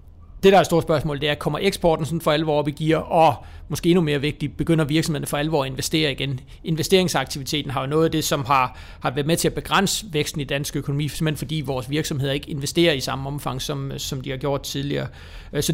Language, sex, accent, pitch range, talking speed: Danish, male, native, 140-165 Hz, 235 wpm